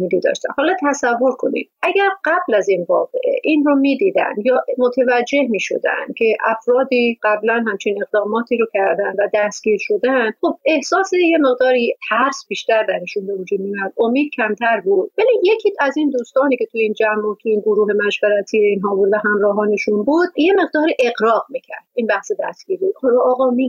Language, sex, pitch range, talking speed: Persian, female, 215-295 Hz, 170 wpm